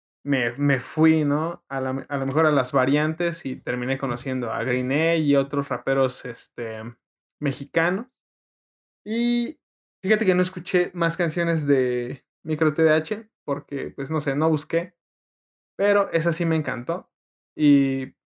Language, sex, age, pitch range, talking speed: Spanish, male, 20-39, 135-165 Hz, 140 wpm